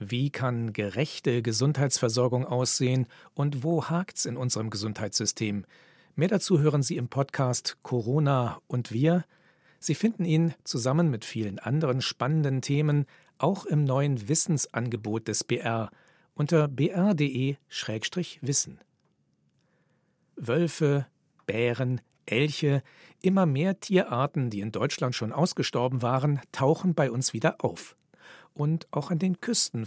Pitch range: 120-160 Hz